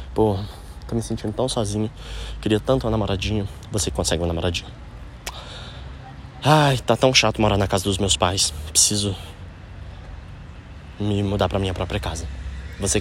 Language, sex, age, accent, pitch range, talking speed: Portuguese, male, 20-39, Brazilian, 95-145 Hz, 150 wpm